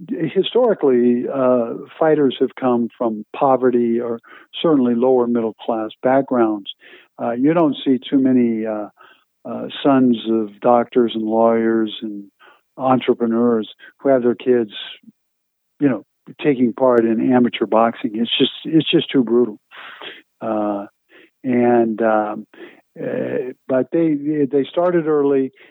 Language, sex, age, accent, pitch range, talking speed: English, male, 50-69, American, 115-130 Hz, 125 wpm